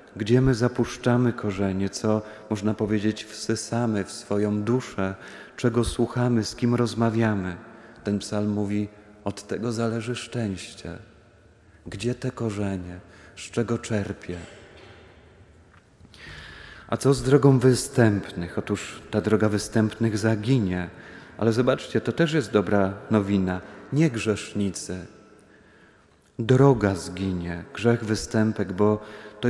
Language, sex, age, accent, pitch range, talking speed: Polish, male, 30-49, native, 100-120 Hz, 110 wpm